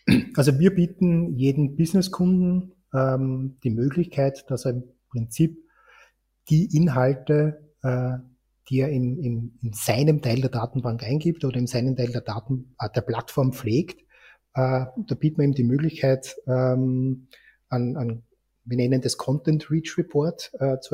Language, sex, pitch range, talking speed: German, male, 125-150 Hz, 150 wpm